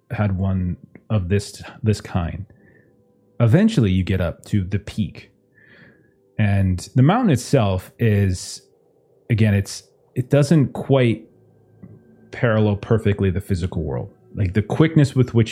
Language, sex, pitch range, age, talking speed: English, male, 100-125 Hz, 30-49, 130 wpm